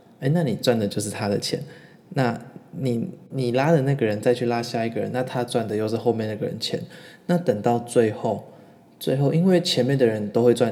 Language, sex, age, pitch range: Chinese, male, 20-39, 110-135 Hz